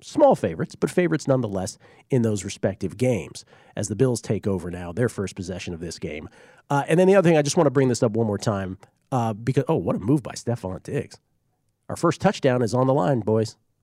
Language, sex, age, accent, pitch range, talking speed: English, male, 40-59, American, 110-155 Hz, 235 wpm